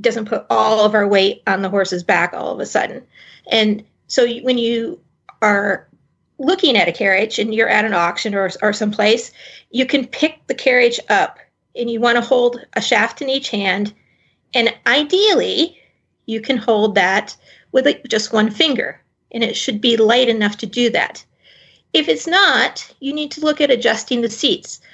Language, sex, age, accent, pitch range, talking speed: English, female, 40-59, American, 210-255 Hz, 185 wpm